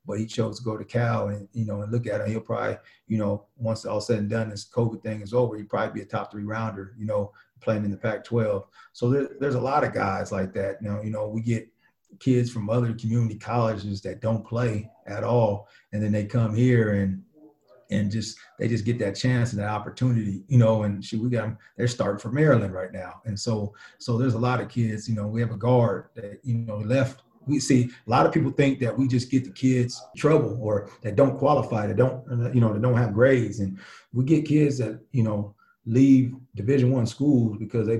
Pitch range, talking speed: 105-125 Hz, 240 wpm